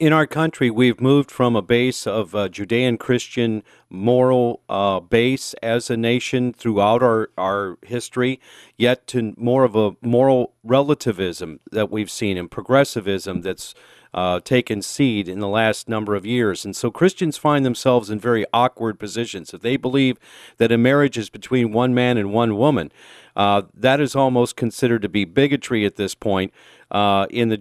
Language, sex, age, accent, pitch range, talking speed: English, male, 50-69, American, 105-130 Hz, 170 wpm